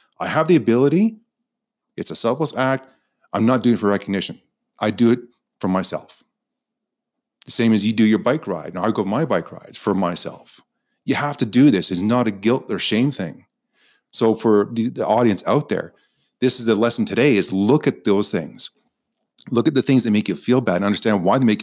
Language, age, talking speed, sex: English, 40-59, 215 wpm, male